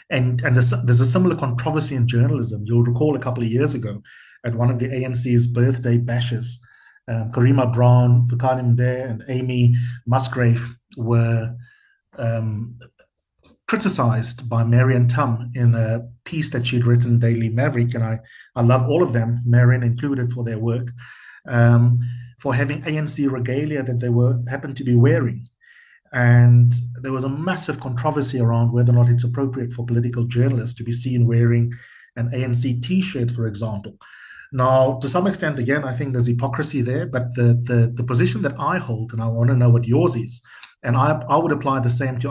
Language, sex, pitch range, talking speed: English, male, 120-130 Hz, 180 wpm